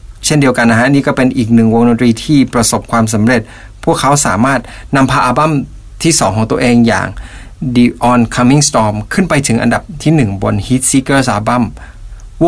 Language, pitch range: Thai, 110-135 Hz